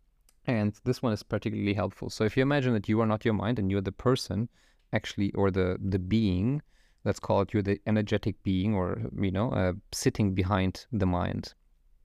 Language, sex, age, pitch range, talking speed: English, male, 30-49, 95-120 Hz, 205 wpm